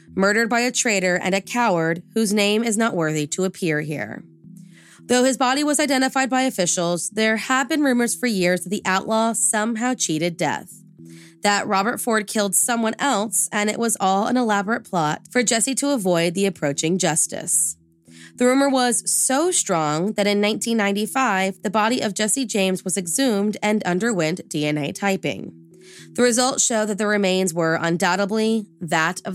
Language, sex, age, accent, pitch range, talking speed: English, female, 20-39, American, 175-230 Hz, 170 wpm